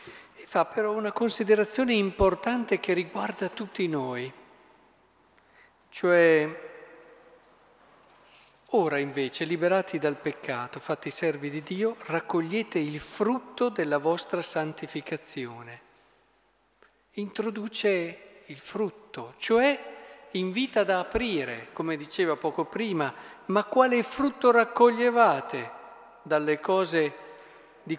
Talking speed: 90 wpm